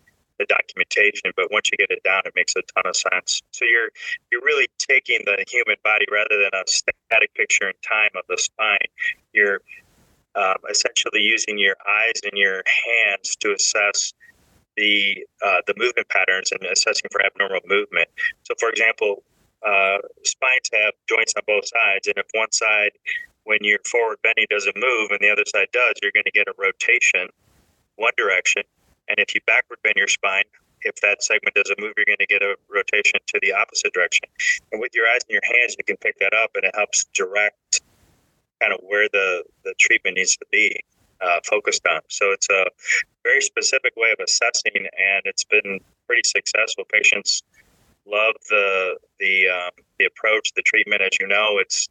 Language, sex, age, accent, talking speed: English, male, 30-49, American, 185 wpm